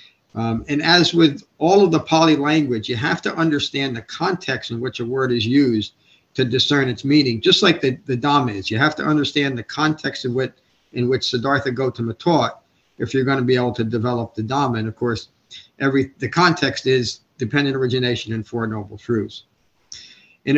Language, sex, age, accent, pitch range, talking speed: English, male, 50-69, American, 115-150 Hz, 195 wpm